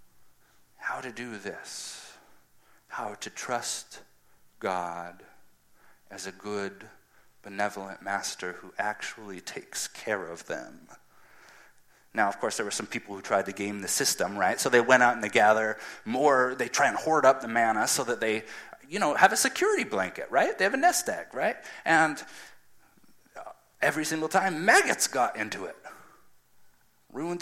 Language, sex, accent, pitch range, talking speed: English, male, American, 95-130 Hz, 160 wpm